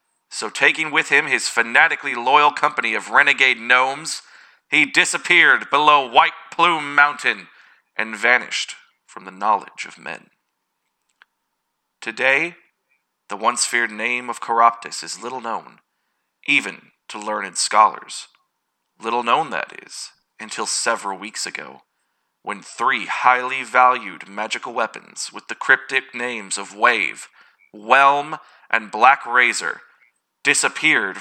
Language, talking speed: English, 120 wpm